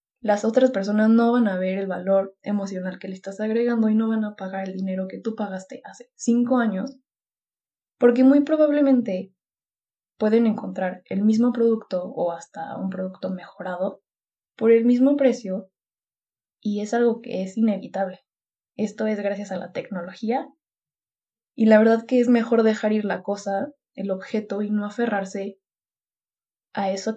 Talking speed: 160 wpm